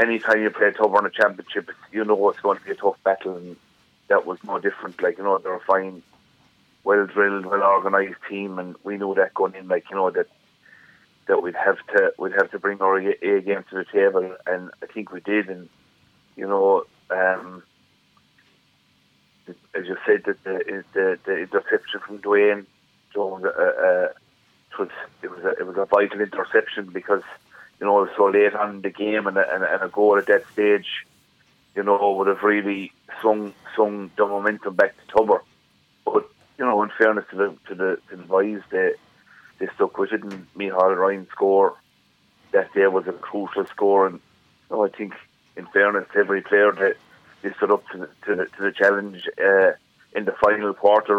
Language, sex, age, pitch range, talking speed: English, male, 30-49, 100-110 Hz, 195 wpm